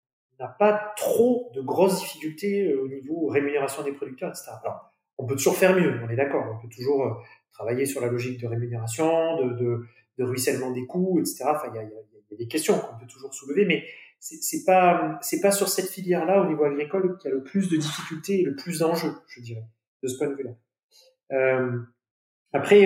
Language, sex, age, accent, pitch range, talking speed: French, male, 30-49, French, 125-165 Hz, 215 wpm